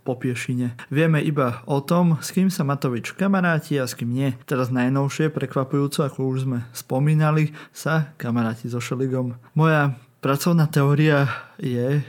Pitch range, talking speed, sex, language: 130-160 Hz, 150 wpm, male, Slovak